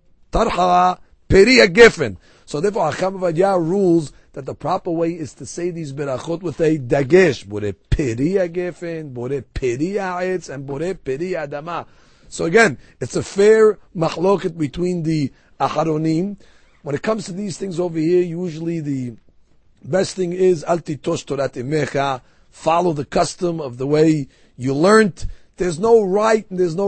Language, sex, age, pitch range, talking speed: English, male, 40-59, 150-195 Hz, 115 wpm